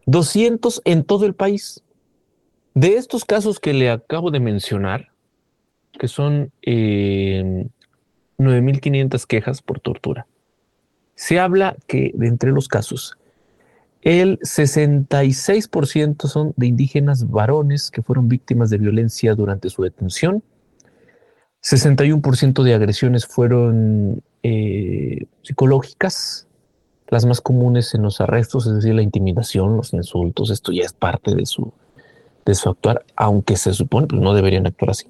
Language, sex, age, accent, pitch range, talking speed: Spanish, male, 40-59, Mexican, 115-150 Hz, 130 wpm